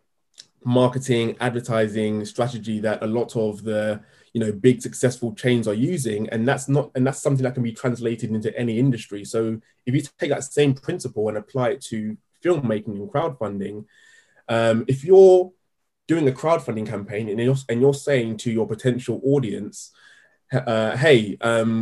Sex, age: male, 20-39